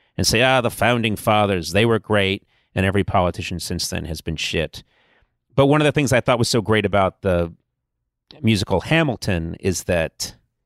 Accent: American